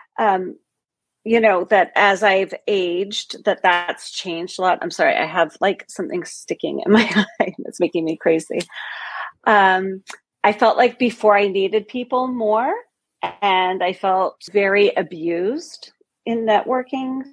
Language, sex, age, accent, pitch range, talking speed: English, female, 40-59, American, 190-255 Hz, 145 wpm